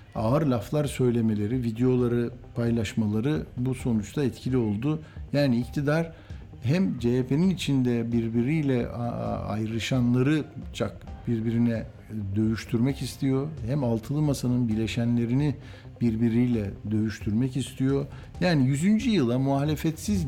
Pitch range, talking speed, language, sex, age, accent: 115-140 Hz, 90 wpm, Turkish, male, 60-79, native